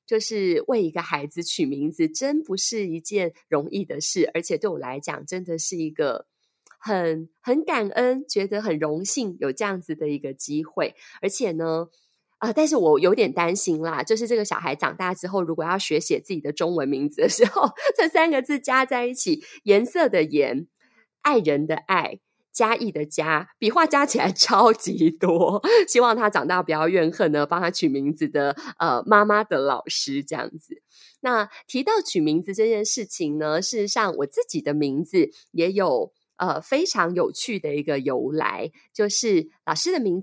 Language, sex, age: Chinese, female, 30-49